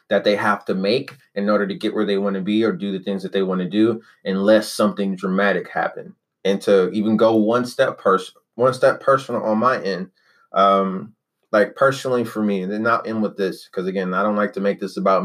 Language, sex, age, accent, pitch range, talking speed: English, male, 20-39, American, 100-115 Hz, 235 wpm